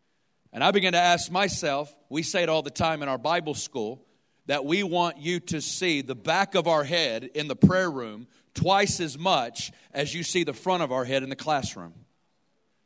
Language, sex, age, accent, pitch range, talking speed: English, male, 40-59, American, 150-195 Hz, 210 wpm